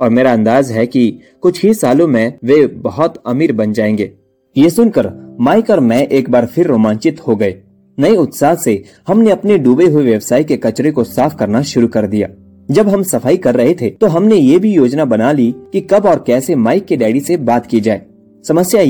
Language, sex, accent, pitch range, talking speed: Hindi, male, native, 115-170 Hz, 210 wpm